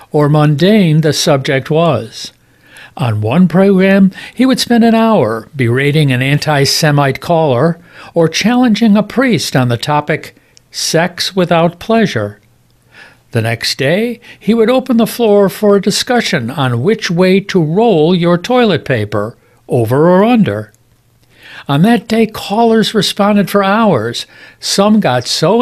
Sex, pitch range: male, 125-195 Hz